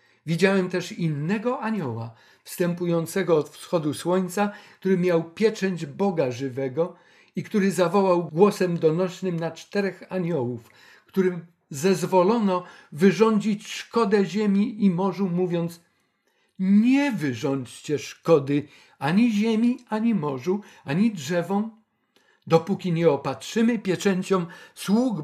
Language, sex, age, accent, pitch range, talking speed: Polish, male, 50-69, native, 150-190 Hz, 100 wpm